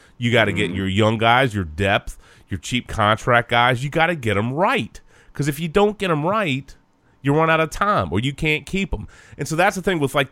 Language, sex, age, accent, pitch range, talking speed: English, male, 30-49, American, 105-145 Hz, 250 wpm